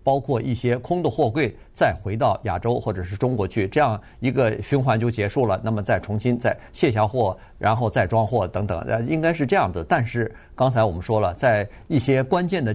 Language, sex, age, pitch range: Chinese, male, 50-69, 110-155 Hz